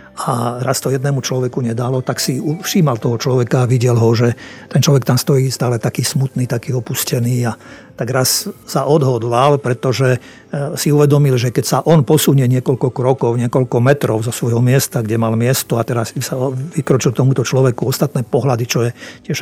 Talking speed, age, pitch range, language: 180 wpm, 50-69, 125-145 Hz, Slovak